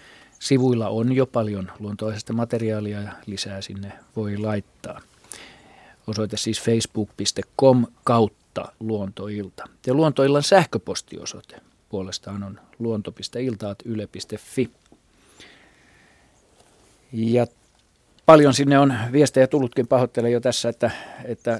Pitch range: 110-125 Hz